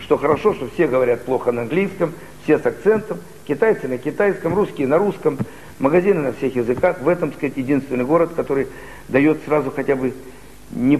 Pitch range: 125-155 Hz